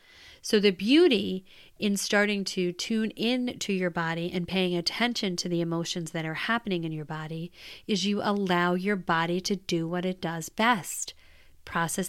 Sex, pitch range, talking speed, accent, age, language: female, 180-225 Hz, 175 wpm, American, 30-49, English